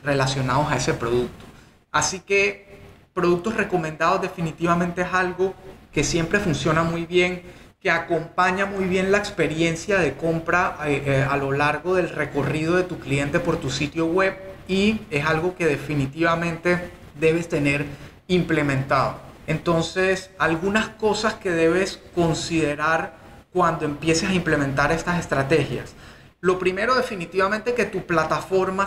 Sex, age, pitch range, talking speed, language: male, 30-49, 150-185 Hz, 130 wpm, Spanish